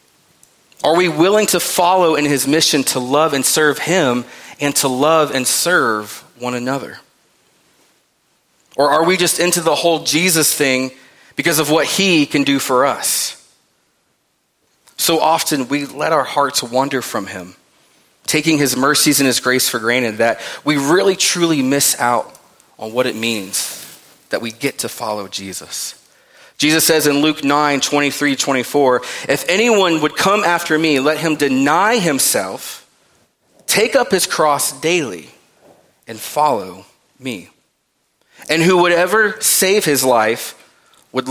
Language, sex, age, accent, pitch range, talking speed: English, male, 30-49, American, 130-165 Hz, 150 wpm